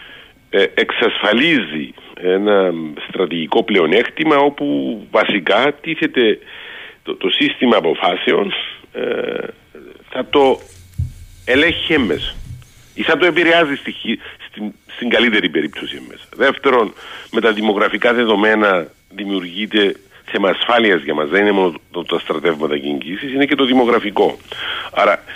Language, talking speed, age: Greek, 105 wpm, 50-69